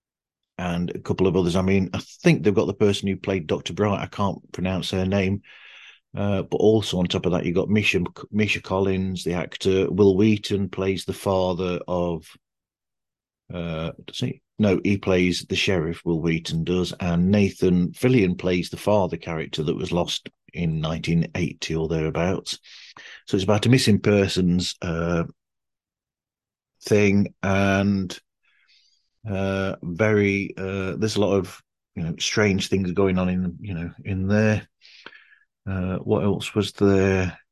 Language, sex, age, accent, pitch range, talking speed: English, male, 40-59, British, 90-100 Hz, 160 wpm